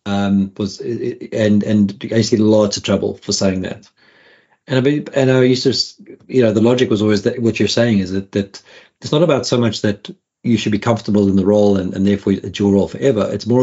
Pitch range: 100-115 Hz